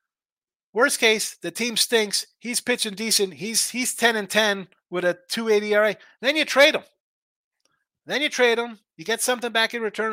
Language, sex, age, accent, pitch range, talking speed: English, male, 30-49, American, 170-225 Hz, 190 wpm